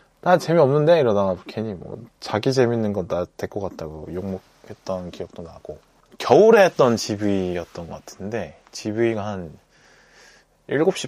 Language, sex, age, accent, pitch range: Korean, male, 20-39, native, 95-135 Hz